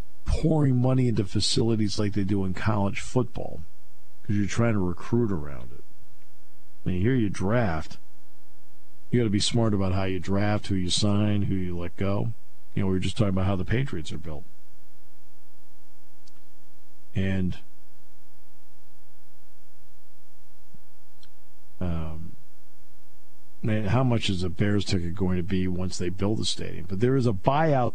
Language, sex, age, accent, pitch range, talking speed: English, male, 50-69, American, 75-105 Hz, 150 wpm